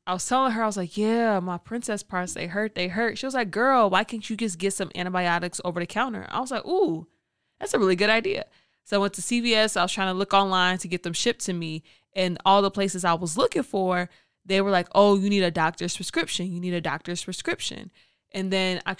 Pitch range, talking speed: 175-210 Hz, 255 wpm